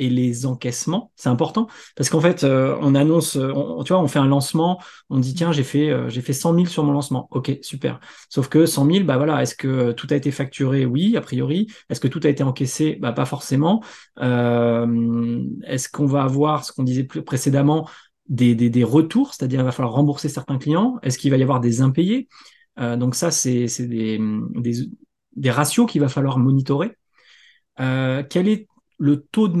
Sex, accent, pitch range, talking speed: male, French, 125-160 Hz, 210 wpm